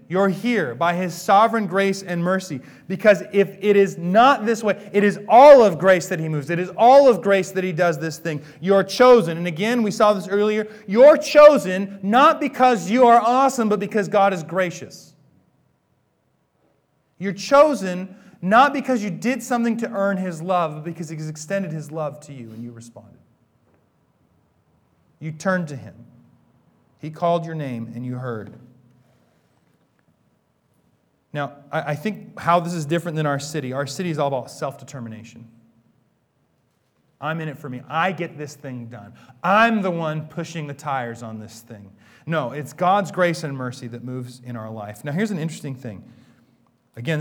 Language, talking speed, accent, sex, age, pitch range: English, 175 wpm, American, male, 30-49, 135-200 Hz